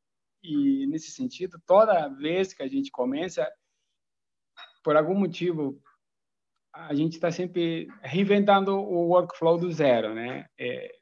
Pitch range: 130-190 Hz